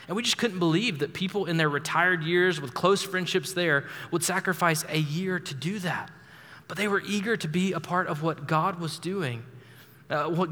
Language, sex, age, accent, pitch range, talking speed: English, male, 20-39, American, 135-165 Hz, 210 wpm